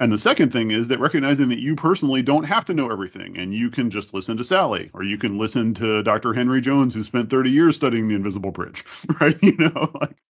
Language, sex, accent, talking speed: English, male, American, 245 wpm